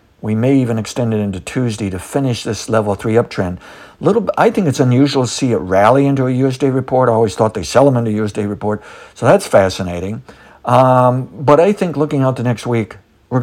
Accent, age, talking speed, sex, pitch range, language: American, 60-79, 215 wpm, male, 105-130 Hz, English